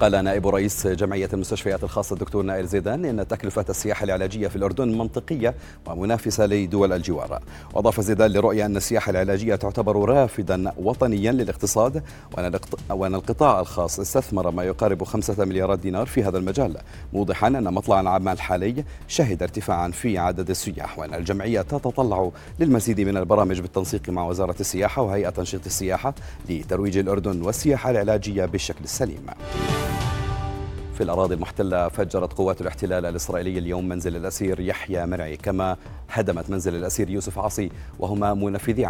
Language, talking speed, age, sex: Arabic, 140 wpm, 40-59, male